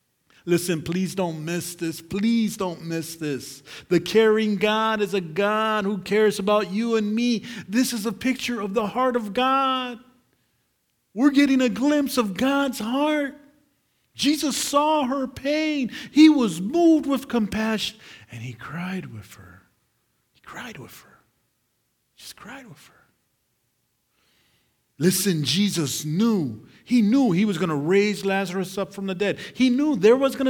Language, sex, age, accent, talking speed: English, male, 50-69, American, 155 wpm